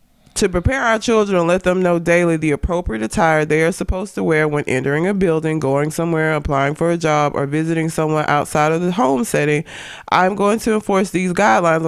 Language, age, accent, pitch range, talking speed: English, 20-39, American, 155-190 Hz, 205 wpm